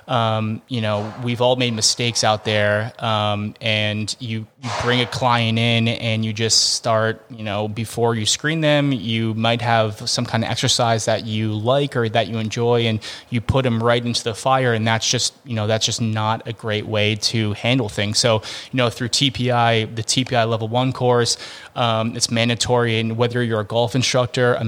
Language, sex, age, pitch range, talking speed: English, male, 20-39, 110-125 Hz, 200 wpm